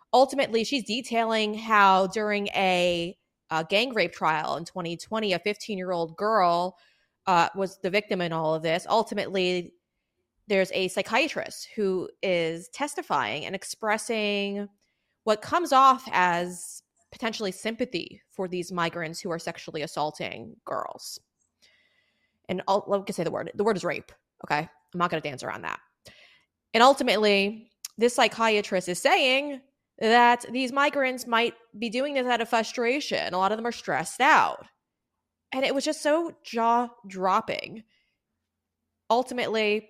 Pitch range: 185-245 Hz